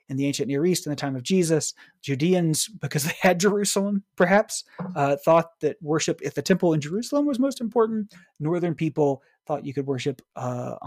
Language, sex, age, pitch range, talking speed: English, male, 30-49, 140-195 Hz, 195 wpm